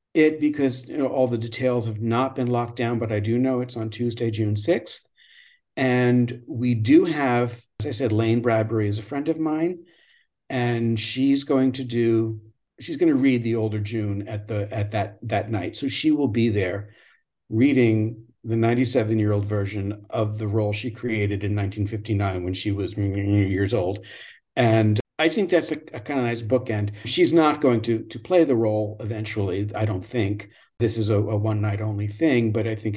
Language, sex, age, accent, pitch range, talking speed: English, male, 50-69, American, 105-130 Hz, 200 wpm